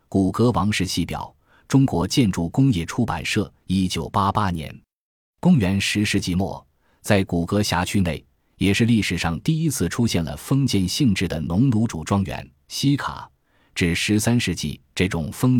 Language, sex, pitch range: Chinese, male, 85-115 Hz